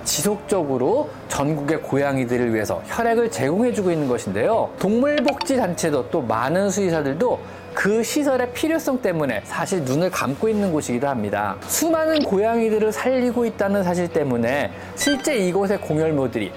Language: Korean